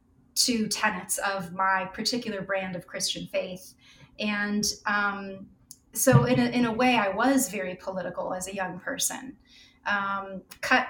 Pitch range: 200-245 Hz